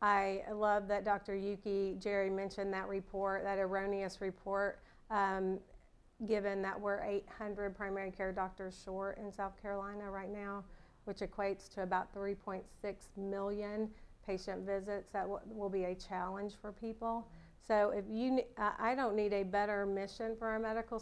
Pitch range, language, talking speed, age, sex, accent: 190-210 Hz, English, 155 wpm, 40-59, female, American